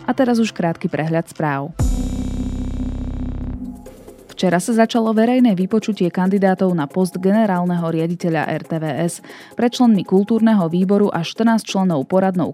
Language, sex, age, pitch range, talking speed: Slovak, female, 20-39, 155-195 Hz, 120 wpm